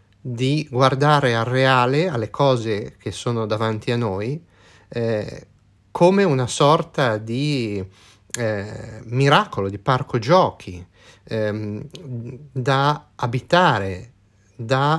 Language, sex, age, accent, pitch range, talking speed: Italian, male, 30-49, native, 100-135 Hz, 100 wpm